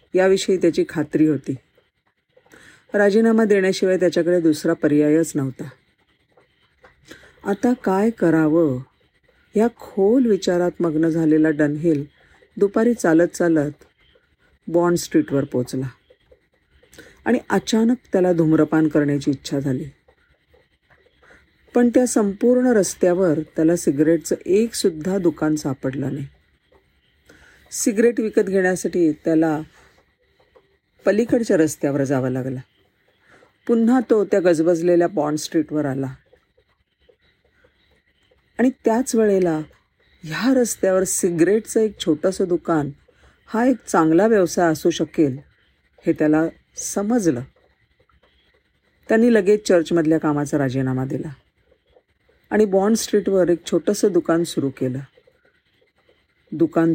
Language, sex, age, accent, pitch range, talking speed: Marathi, female, 50-69, native, 155-215 Hz, 95 wpm